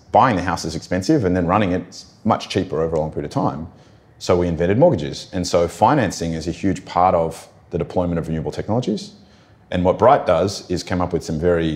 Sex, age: male, 30-49